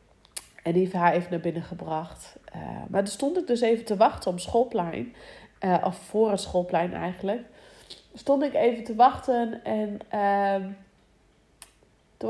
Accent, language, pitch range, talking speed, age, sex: Dutch, Dutch, 205-245 Hz, 160 wpm, 30-49, female